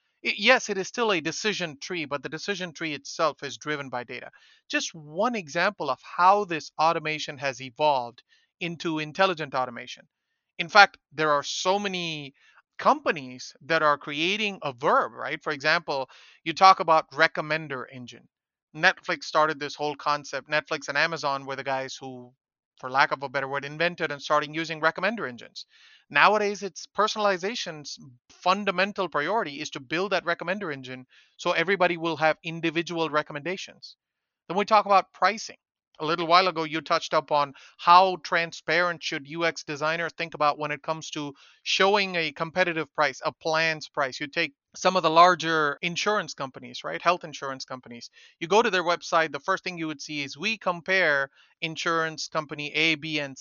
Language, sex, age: English, male, 30-49